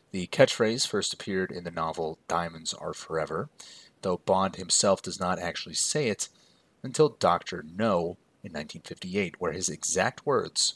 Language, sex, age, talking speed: English, male, 30-49, 150 wpm